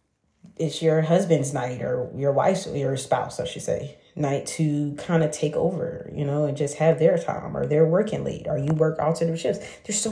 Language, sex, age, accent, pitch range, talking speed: English, female, 30-49, American, 145-180 Hz, 220 wpm